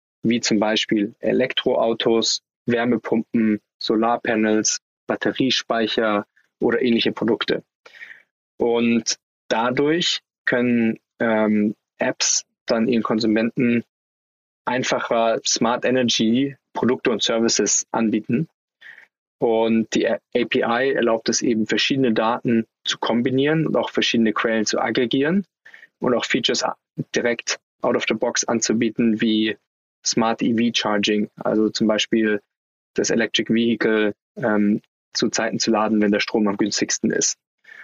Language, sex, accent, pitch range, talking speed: German, male, German, 110-120 Hz, 115 wpm